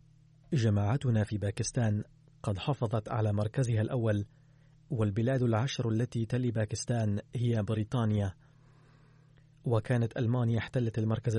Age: 30-49